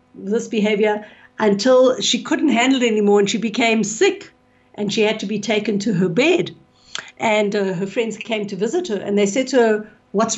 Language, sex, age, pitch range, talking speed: English, female, 60-79, 200-245 Hz, 200 wpm